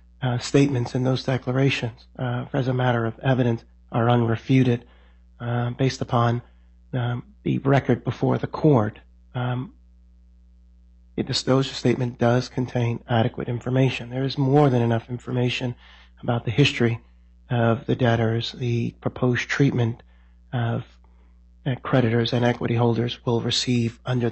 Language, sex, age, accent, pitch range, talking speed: English, male, 40-59, American, 100-125 Hz, 135 wpm